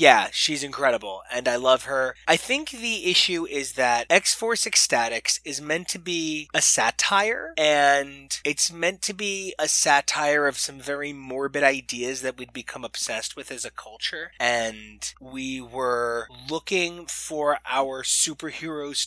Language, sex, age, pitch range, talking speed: English, male, 20-39, 120-155 Hz, 150 wpm